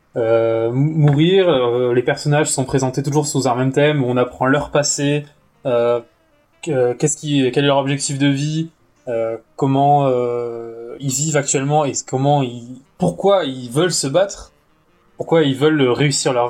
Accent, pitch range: French, 115-145 Hz